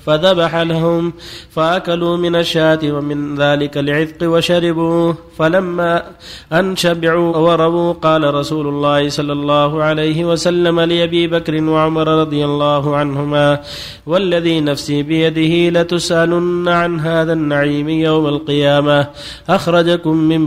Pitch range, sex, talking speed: 145-170 Hz, male, 105 wpm